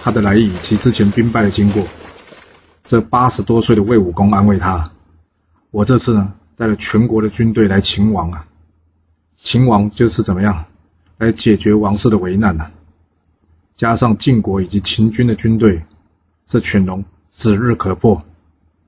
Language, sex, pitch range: Chinese, male, 85-110 Hz